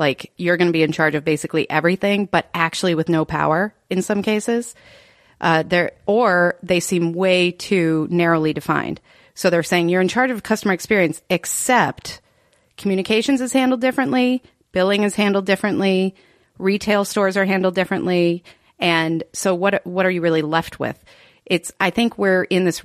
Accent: American